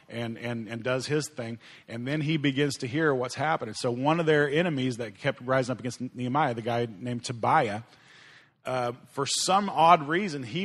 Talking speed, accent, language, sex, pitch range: 195 wpm, American, English, male, 130-160 Hz